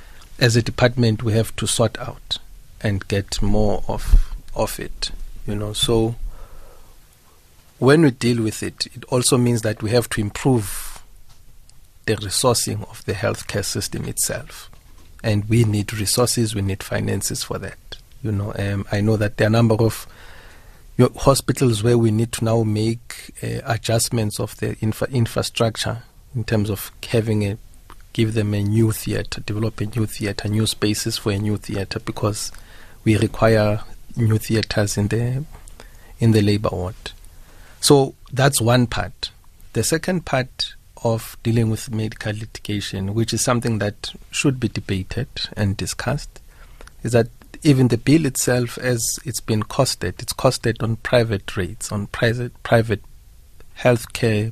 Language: English